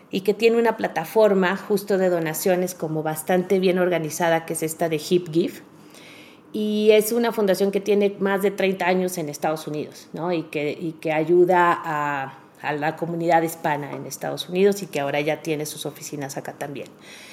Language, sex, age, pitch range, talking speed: Spanish, female, 30-49, 155-190 Hz, 185 wpm